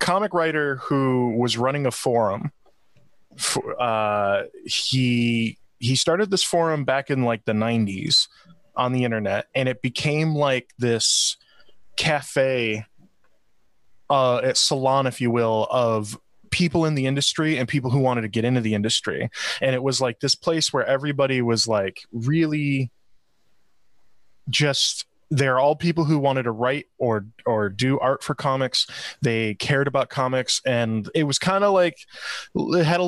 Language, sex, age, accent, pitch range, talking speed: English, male, 20-39, American, 120-150 Hz, 155 wpm